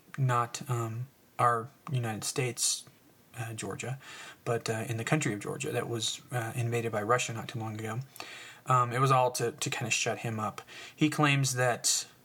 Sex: male